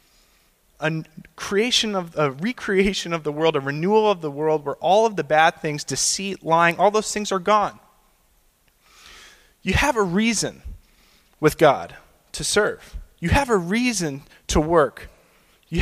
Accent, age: American, 20-39